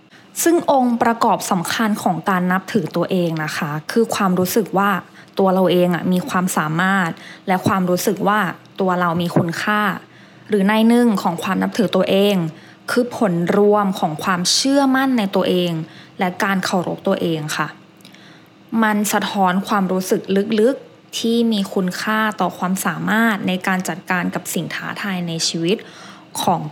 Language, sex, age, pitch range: English, female, 20-39, 180-215 Hz